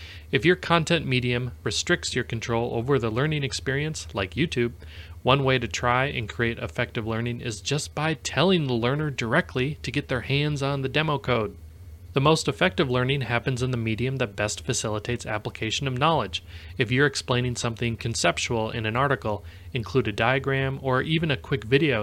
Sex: male